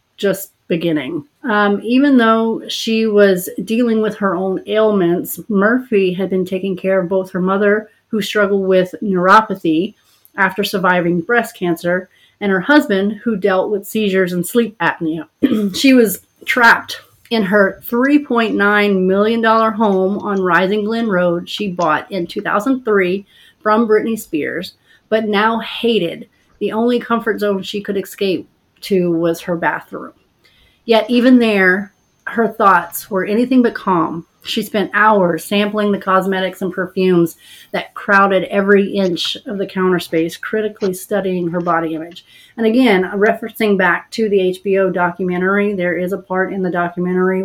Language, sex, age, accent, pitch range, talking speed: English, female, 30-49, American, 185-215 Hz, 145 wpm